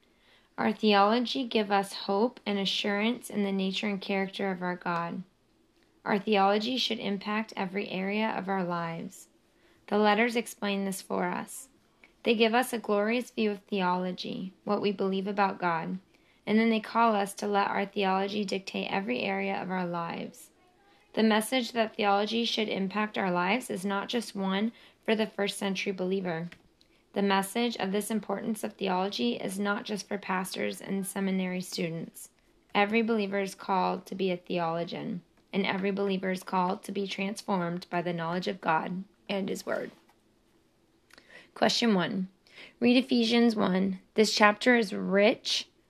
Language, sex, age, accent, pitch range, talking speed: English, female, 20-39, American, 190-220 Hz, 160 wpm